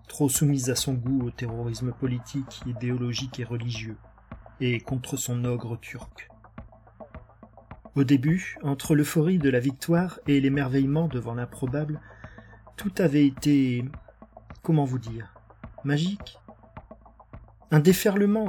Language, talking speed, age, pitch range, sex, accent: French, 115 wpm, 40-59, 125-155 Hz, male, French